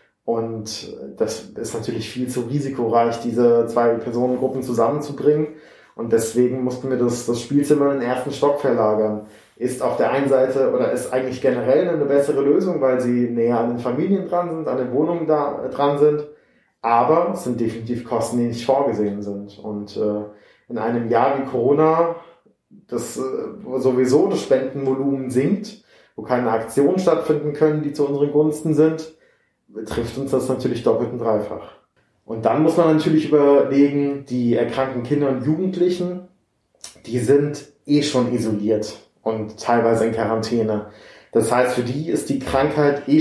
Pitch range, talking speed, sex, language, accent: 115-145 Hz, 160 wpm, male, German, German